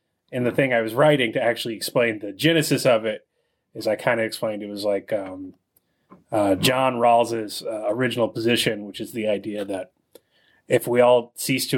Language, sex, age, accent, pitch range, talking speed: English, male, 30-49, American, 105-130 Hz, 195 wpm